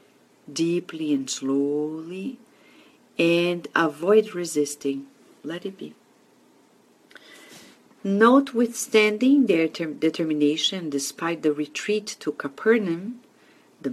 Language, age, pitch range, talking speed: English, 50-69, 155-220 Hz, 80 wpm